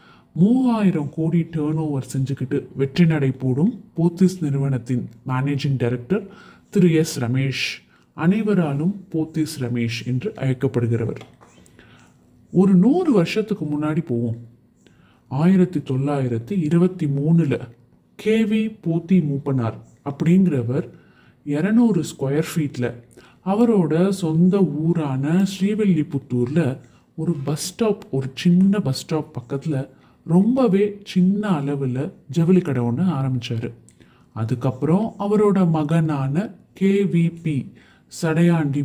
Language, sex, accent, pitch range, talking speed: Tamil, male, native, 130-180 Hz, 85 wpm